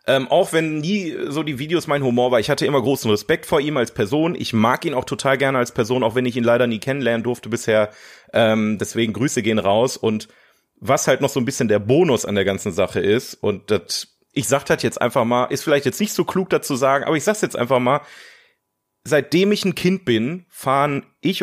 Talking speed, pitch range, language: 235 wpm, 105-140 Hz, German